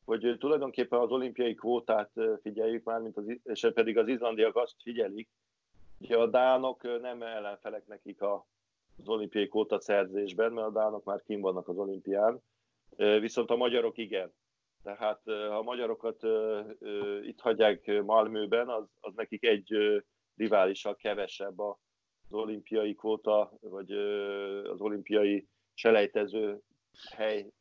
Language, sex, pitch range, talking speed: Hungarian, male, 105-125 Hz, 120 wpm